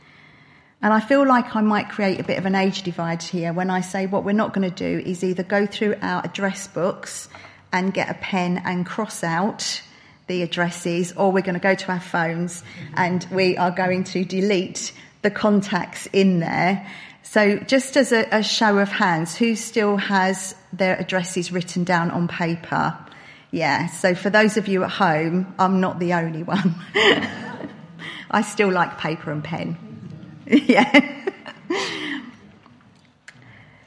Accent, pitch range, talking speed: British, 175-215 Hz, 165 wpm